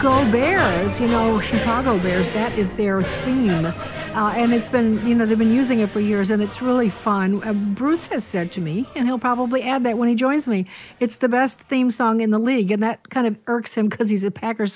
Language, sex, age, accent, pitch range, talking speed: English, female, 60-79, American, 210-250 Hz, 240 wpm